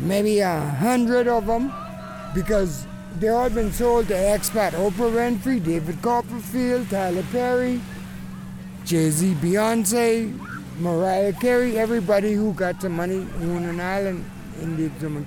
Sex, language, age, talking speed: male, English, 60-79, 130 wpm